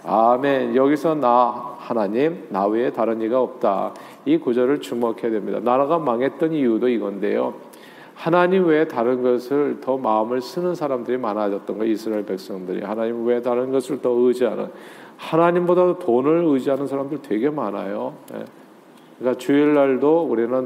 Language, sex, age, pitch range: Korean, male, 40-59, 120-155 Hz